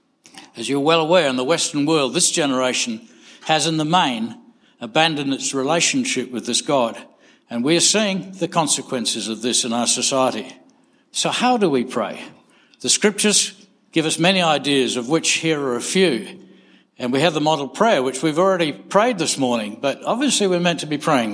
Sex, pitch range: male, 130-195 Hz